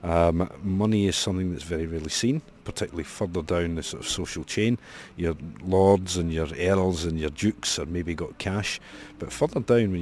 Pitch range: 85-105 Hz